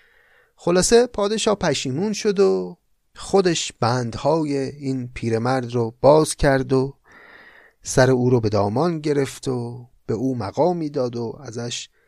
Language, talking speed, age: Persian, 130 wpm, 30-49